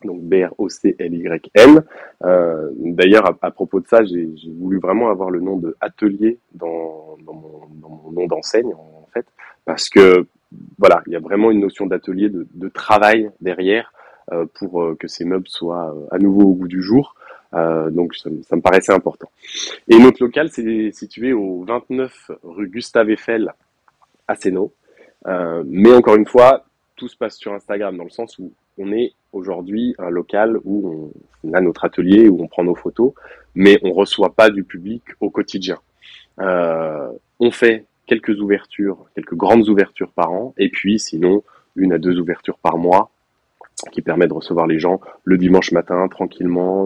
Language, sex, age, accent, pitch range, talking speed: French, male, 20-39, French, 85-105 Hz, 175 wpm